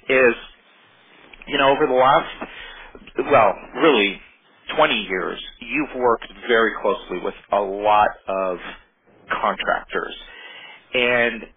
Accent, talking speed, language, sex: American, 105 wpm, English, male